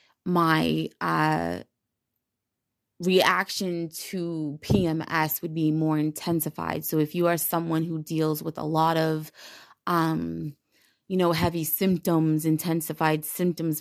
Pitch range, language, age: 155-175 Hz, English, 20-39